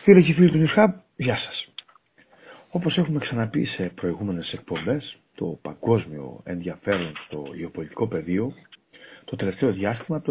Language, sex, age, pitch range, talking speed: Greek, male, 60-79, 100-150 Hz, 135 wpm